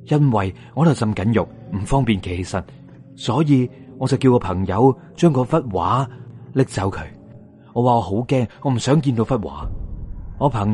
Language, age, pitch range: Chinese, 30-49, 90-130 Hz